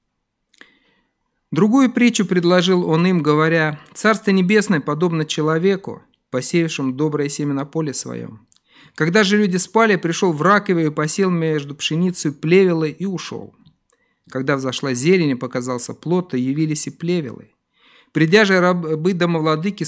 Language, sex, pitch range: Russian, male, 135-185 Hz